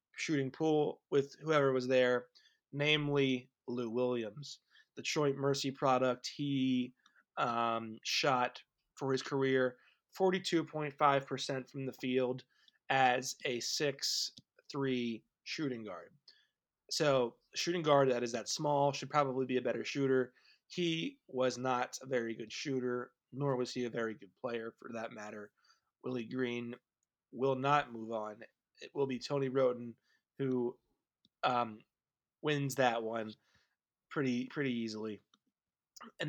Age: 20-39